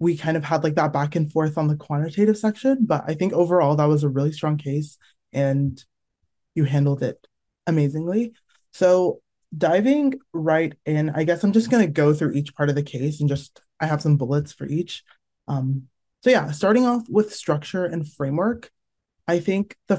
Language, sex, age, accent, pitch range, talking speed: English, male, 20-39, American, 140-175 Hz, 190 wpm